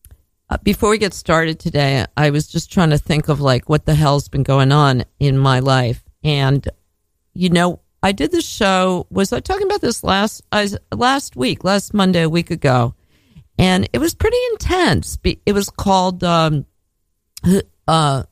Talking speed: 175 wpm